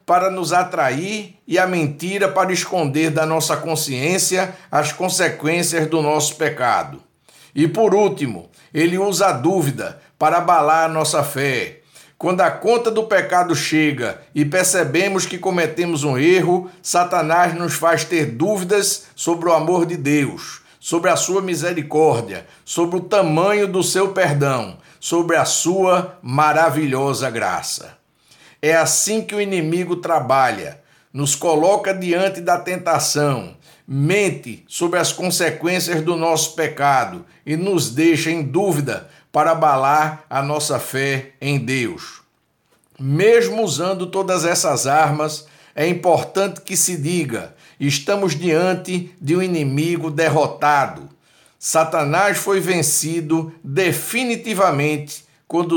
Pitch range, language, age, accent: 150-185 Hz, Portuguese, 60-79, Brazilian